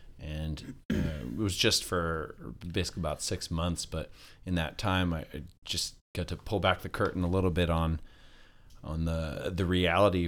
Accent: American